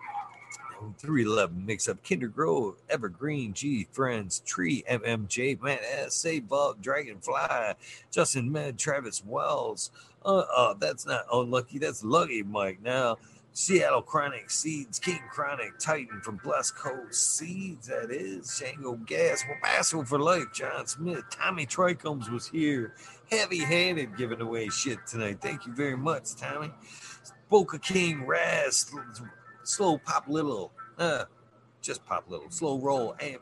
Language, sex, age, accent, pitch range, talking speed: English, male, 50-69, American, 110-145 Hz, 135 wpm